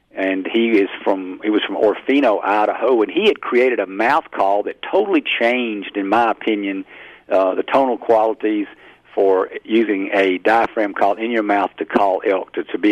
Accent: American